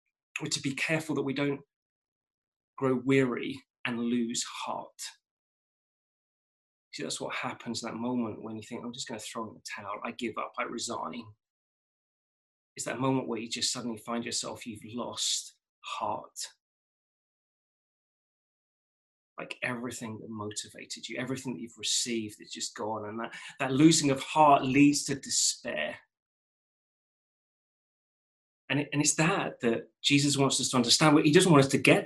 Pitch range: 120-170 Hz